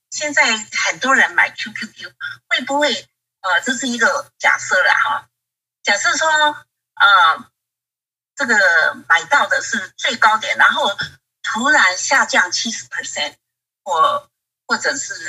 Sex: female